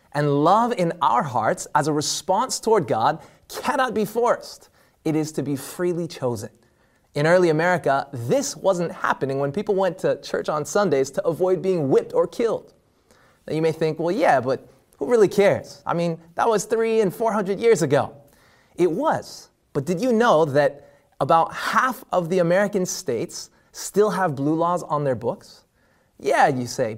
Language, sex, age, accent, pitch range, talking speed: English, male, 30-49, American, 140-200 Hz, 180 wpm